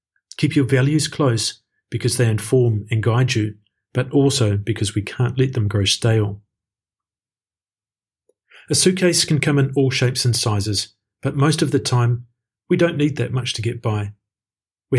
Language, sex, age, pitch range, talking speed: English, male, 40-59, 105-135 Hz, 170 wpm